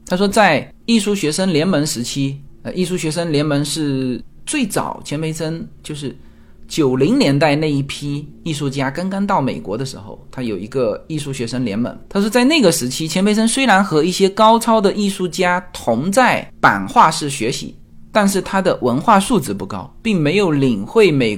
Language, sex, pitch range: Chinese, male, 130-200 Hz